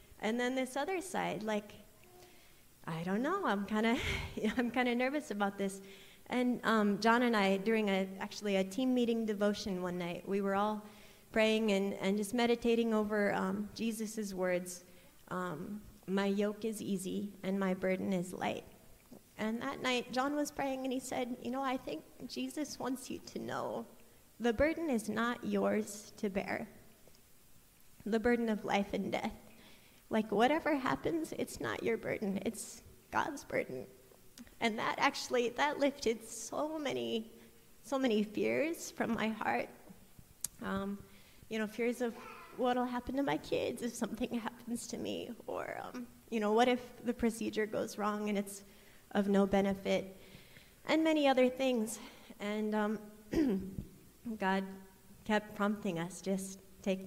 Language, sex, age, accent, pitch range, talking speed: English, female, 30-49, American, 200-245 Hz, 155 wpm